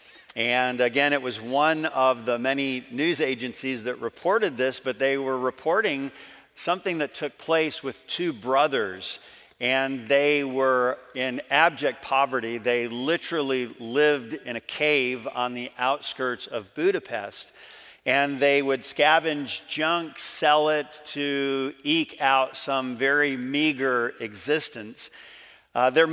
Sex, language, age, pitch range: male, English, 50-69, 125-145 Hz